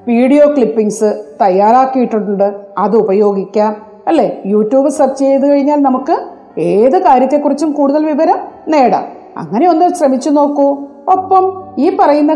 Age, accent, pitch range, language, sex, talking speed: 40-59, native, 220-310 Hz, Malayalam, female, 110 wpm